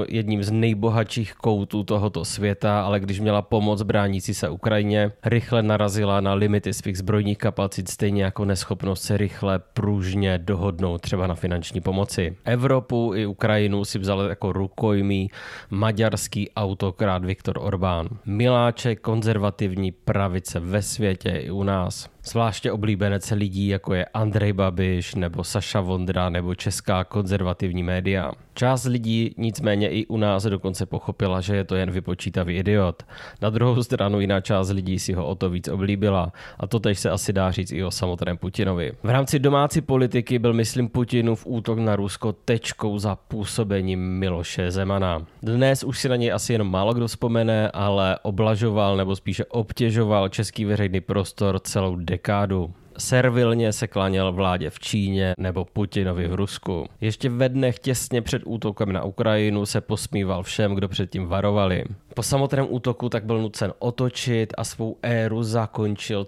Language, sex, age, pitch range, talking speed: Czech, male, 20-39, 95-115 Hz, 155 wpm